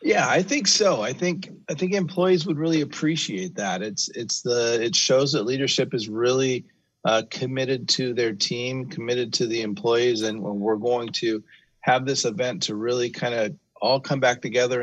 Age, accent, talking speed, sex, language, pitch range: 30-49, American, 190 wpm, male, English, 105-125 Hz